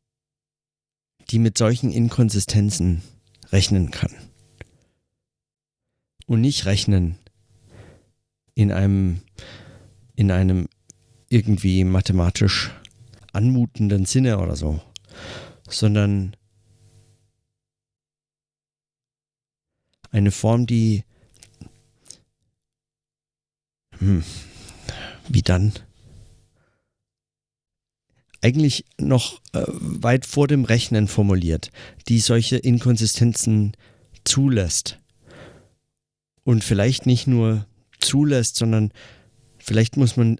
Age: 50-69